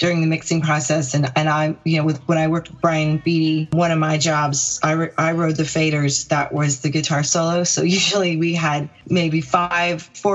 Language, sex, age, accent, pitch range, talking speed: English, female, 30-49, American, 145-170 Hz, 215 wpm